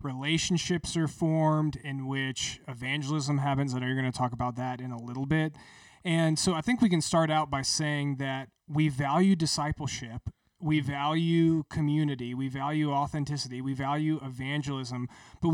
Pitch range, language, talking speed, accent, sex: 130-155 Hz, English, 165 wpm, American, male